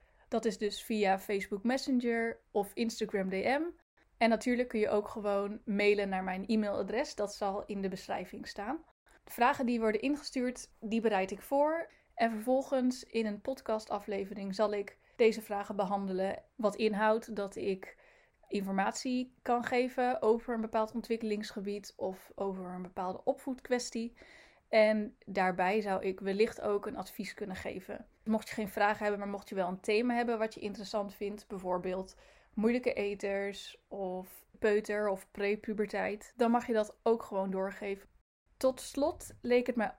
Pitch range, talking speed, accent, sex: 200-235 Hz, 160 wpm, Dutch, female